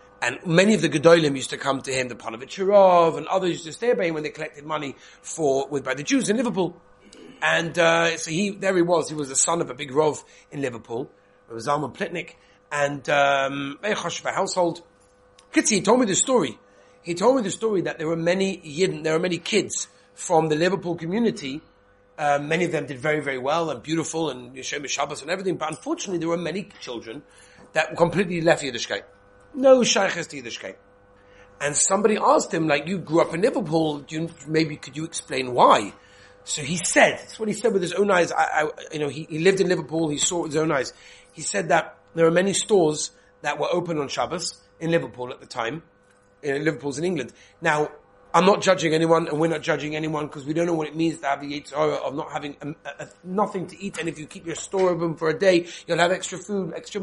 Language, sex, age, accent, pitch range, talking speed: English, male, 40-59, British, 145-180 Hz, 225 wpm